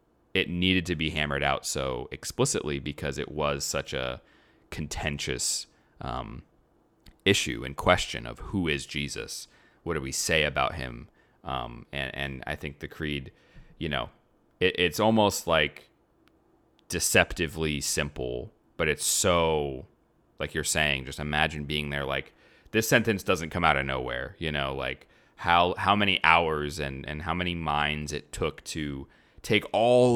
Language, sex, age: English, male, 30-49